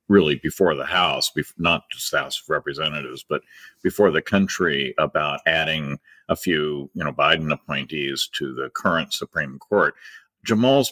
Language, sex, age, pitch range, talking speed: English, male, 50-69, 85-105 Hz, 150 wpm